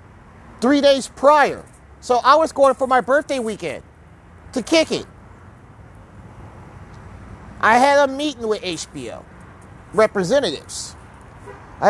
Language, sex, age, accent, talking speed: English, male, 30-49, American, 110 wpm